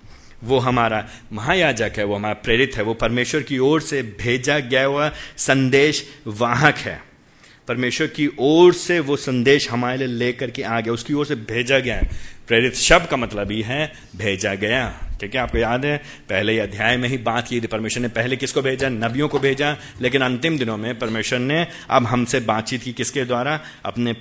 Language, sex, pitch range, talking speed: Hindi, male, 110-145 Hz, 190 wpm